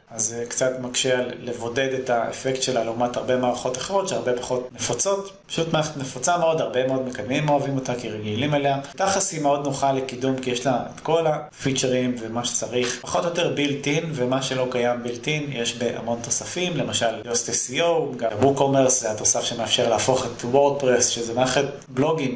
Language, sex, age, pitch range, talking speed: Hebrew, male, 30-49, 120-145 Hz, 175 wpm